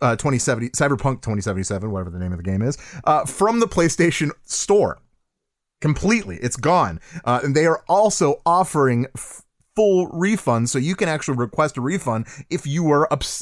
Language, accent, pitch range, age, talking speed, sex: English, American, 125-175 Hz, 30-49, 175 wpm, male